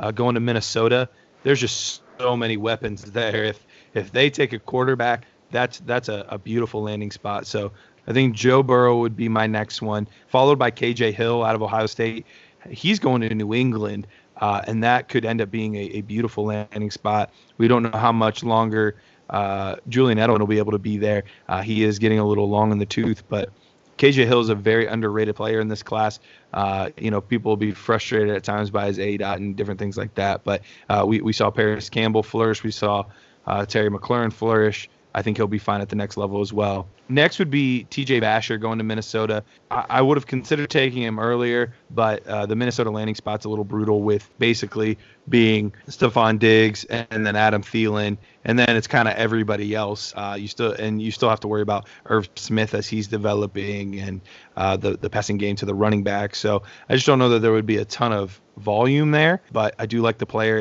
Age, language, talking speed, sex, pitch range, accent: 30-49, English, 220 wpm, male, 105-115 Hz, American